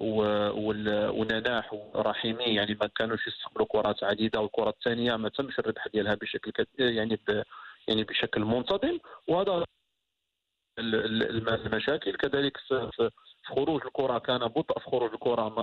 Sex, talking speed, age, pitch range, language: male, 125 wpm, 40-59, 110-125 Hz, Arabic